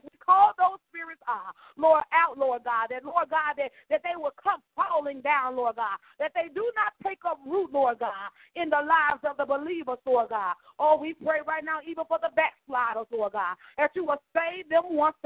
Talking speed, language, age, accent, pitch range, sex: 215 wpm, English, 40-59, American, 275-335 Hz, female